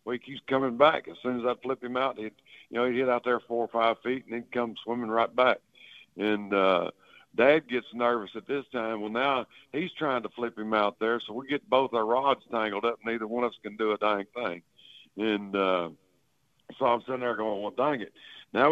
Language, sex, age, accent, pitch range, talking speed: English, male, 60-79, American, 115-130 Hz, 240 wpm